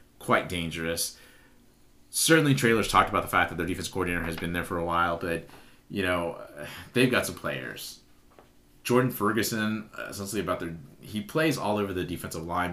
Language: English